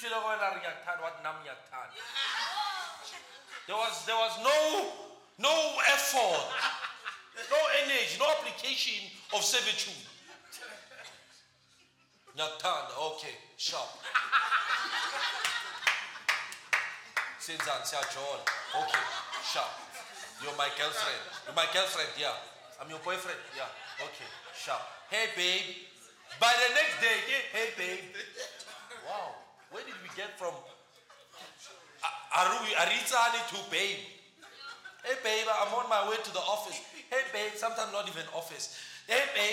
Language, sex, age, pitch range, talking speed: English, male, 40-59, 185-255 Hz, 95 wpm